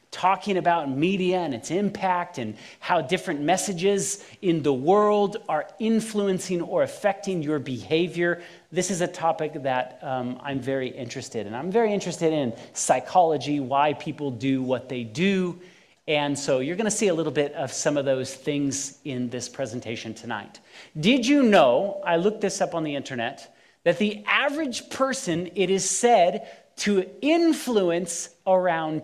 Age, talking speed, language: 40-59, 160 wpm, English